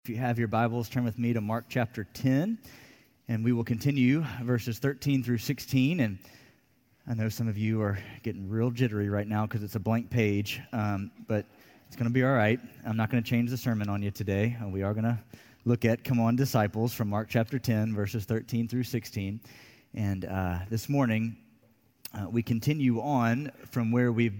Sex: male